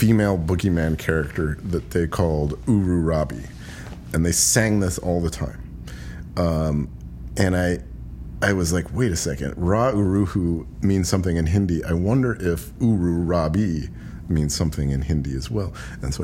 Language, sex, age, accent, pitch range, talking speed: English, male, 40-59, American, 75-105 Hz, 160 wpm